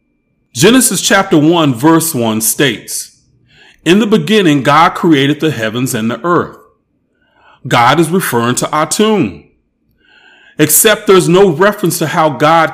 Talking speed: 135 wpm